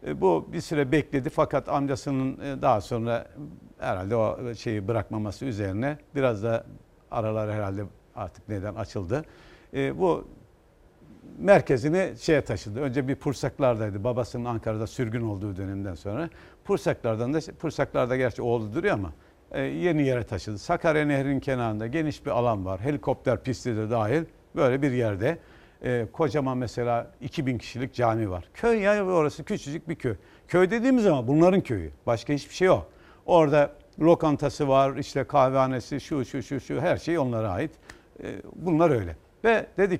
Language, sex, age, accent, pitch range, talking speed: Turkish, male, 60-79, native, 110-150 Hz, 150 wpm